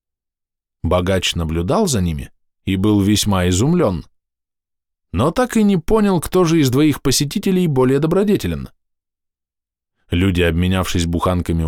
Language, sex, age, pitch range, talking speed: Russian, male, 20-39, 85-120 Hz, 120 wpm